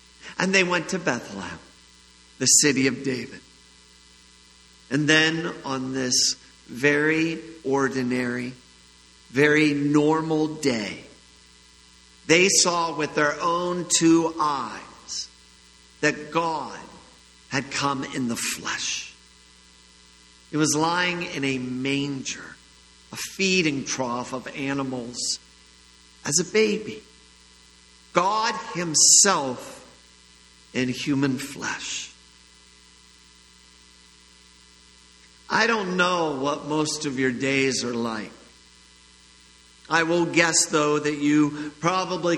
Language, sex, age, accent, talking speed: English, male, 50-69, American, 95 wpm